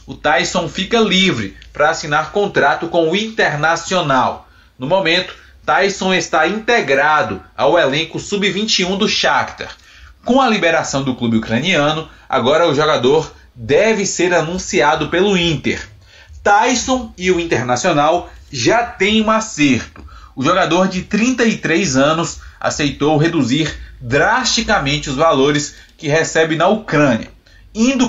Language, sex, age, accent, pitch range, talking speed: Portuguese, male, 20-39, Brazilian, 150-205 Hz, 120 wpm